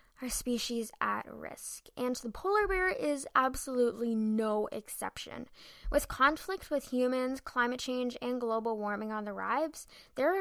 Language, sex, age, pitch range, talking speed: English, female, 10-29, 230-295 Hz, 145 wpm